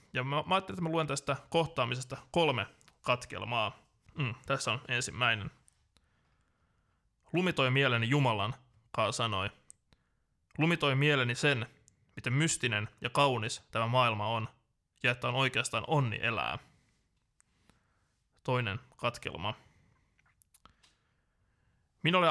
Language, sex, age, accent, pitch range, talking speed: Finnish, male, 20-39, native, 115-140 Hz, 105 wpm